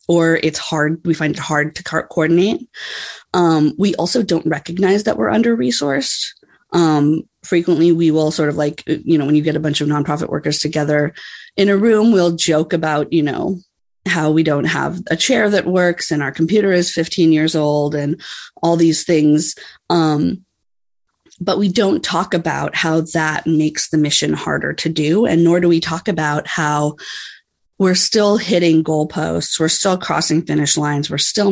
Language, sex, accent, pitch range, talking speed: English, female, American, 150-180 Hz, 175 wpm